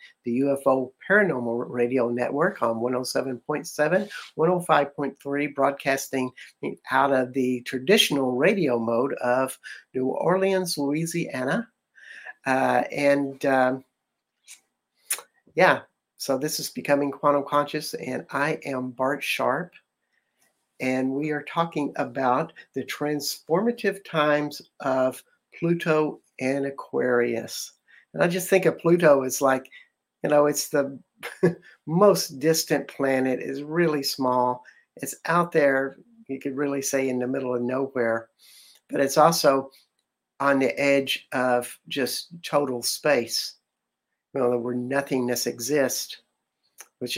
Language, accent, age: English, American, 50-69